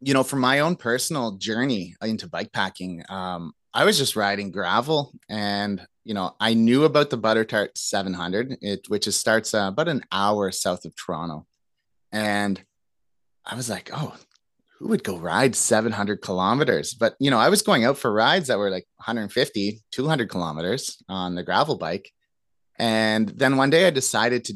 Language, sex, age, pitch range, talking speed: English, male, 30-49, 95-125 Hz, 180 wpm